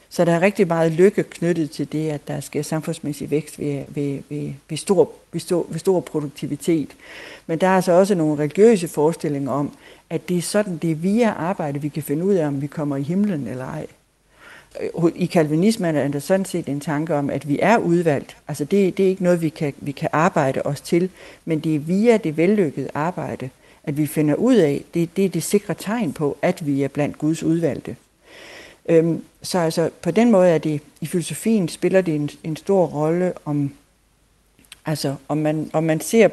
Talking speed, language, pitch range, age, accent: 195 wpm, Danish, 150-180 Hz, 60-79, native